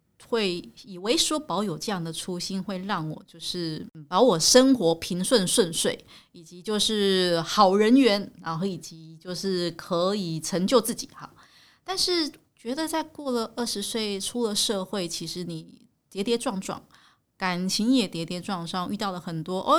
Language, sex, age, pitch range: Chinese, female, 30-49, 165-235 Hz